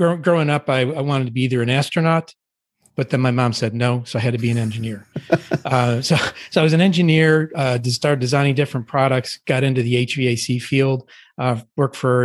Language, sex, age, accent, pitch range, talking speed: English, male, 40-59, American, 120-140 Hz, 210 wpm